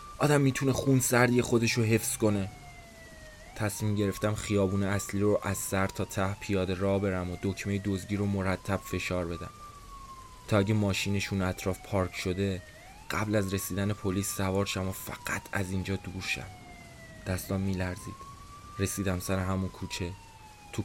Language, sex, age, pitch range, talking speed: Persian, male, 20-39, 95-110 Hz, 145 wpm